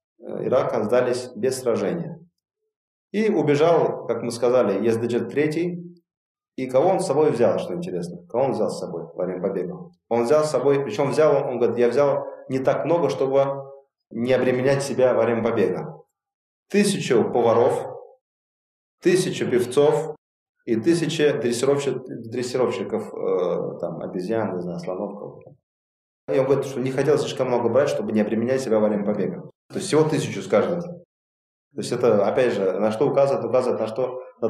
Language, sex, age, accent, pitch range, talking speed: Russian, male, 30-49, native, 110-170 Hz, 160 wpm